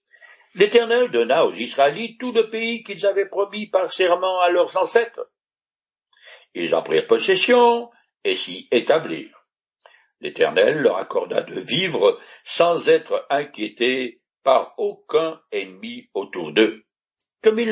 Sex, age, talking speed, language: male, 60-79, 125 wpm, French